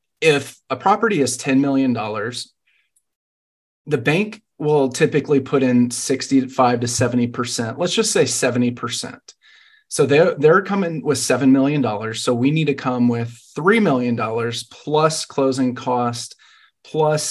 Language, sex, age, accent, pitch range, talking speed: English, male, 30-49, American, 120-150 Hz, 150 wpm